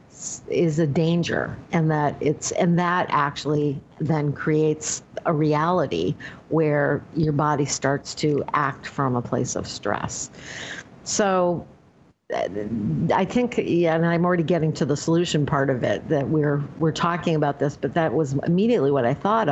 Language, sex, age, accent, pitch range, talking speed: English, female, 50-69, American, 145-170 Hz, 155 wpm